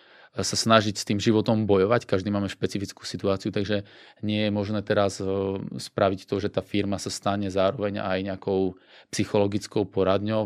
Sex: male